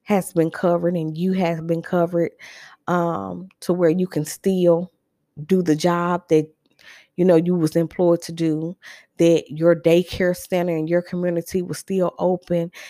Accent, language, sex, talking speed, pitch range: American, English, female, 165 wpm, 160-185 Hz